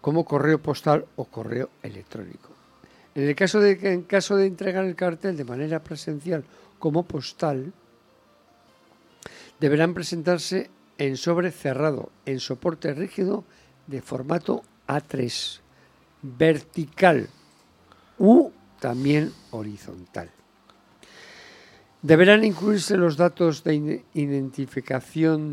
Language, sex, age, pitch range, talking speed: English, male, 60-79, 130-165 Hz, 105 wpm